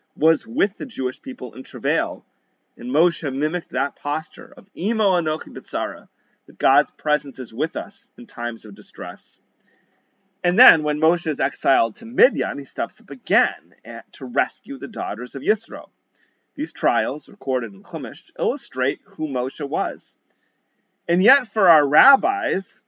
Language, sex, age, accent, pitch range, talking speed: English, male, 30-49, American, 125-175 Hz, 150 wpm